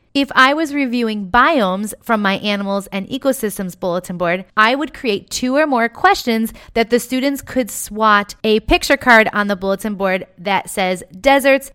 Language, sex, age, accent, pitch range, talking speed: English, female, 30-49, American, 190-250 Hz, 175 wpm